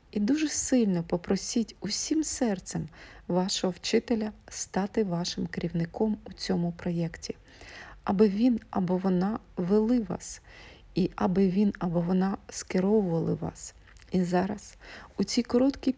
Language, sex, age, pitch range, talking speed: Ukrainian, female, 40-59, 175-215 Hz, 120 wpm